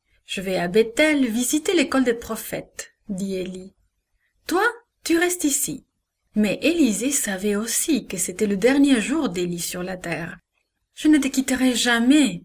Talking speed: 155 wpm